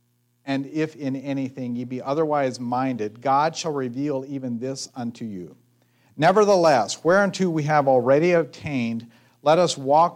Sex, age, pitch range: male, 50-69, 120-150 Hz